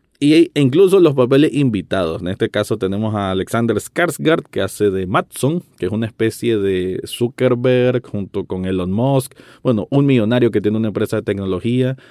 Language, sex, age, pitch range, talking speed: Spanish, male, 30-49, 100-135 Hz, 180 wpm